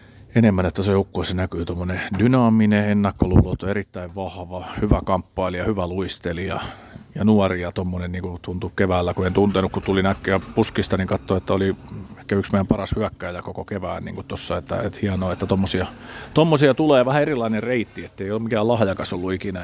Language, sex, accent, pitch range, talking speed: Finnish, male, native, 90-110 Hz, 170 wpm